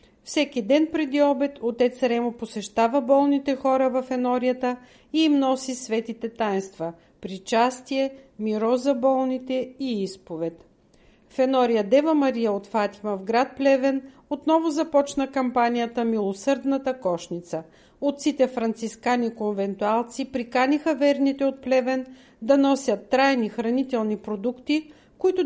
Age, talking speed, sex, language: 50-69, 115 wpm, female, Bulgarian